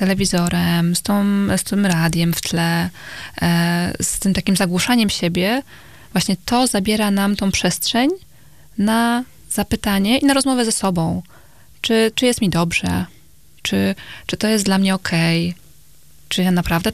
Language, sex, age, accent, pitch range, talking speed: Polish, female, 20-39, native, 175-215 Hz, 150 wpm